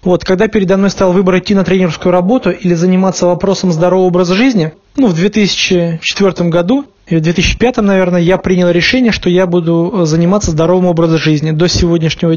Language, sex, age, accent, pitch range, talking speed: Russian, male, 20-39, native, 175-210 Hz, 170 wpm